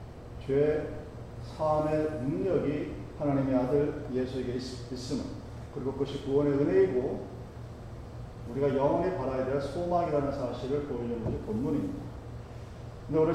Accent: native